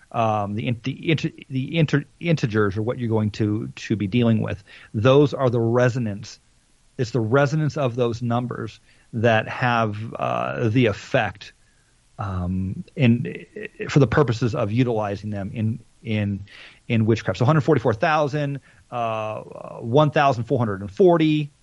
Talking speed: 135 wpm